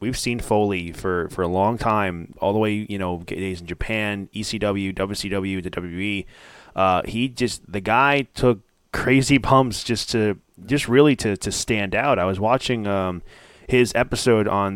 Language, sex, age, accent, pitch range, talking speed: English, male, 20-39, American, 95-125 Hz, 175 wpm